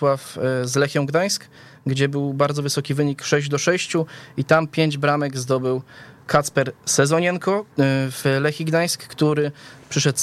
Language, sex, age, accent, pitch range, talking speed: Polish, male, 20-39, native, 135-155 Hz, 135 wpm